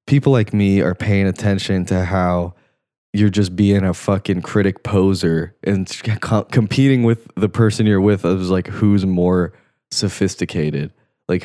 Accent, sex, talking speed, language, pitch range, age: American, male, 145 wpm, English, 90-120 Hz, 20-39